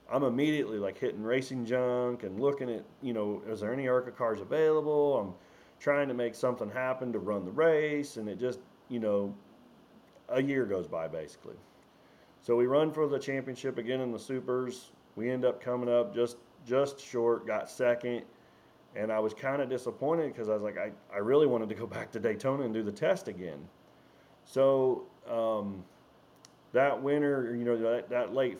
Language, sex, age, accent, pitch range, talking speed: English, male, 30-49, American, 105-125 Hz, 190 wpm